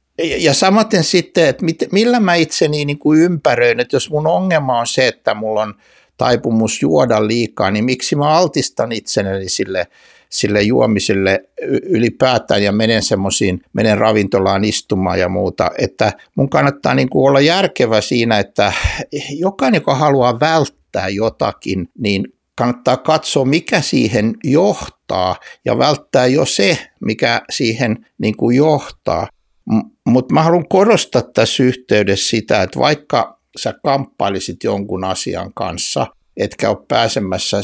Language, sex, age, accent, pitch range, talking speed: Finnish, male, 60-79, native, 100-150 Hz, 130 wpm